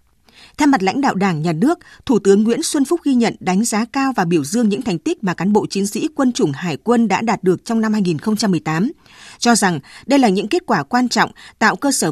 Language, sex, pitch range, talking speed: Vietnamese, female, 185-250 Hz, 250 wpm